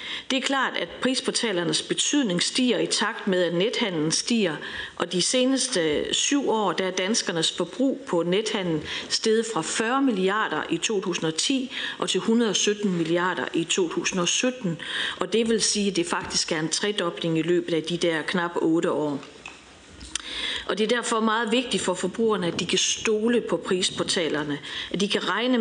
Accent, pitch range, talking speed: native, 175-230 Hz, 170 wpm